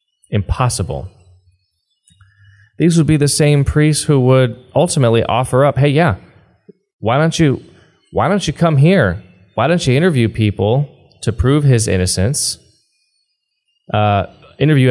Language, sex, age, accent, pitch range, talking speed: English, male, 20-39, American, 100-145 Hz, 135 wpm